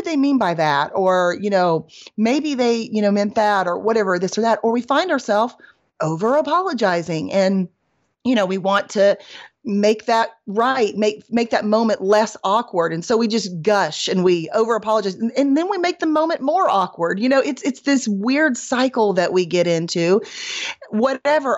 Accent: American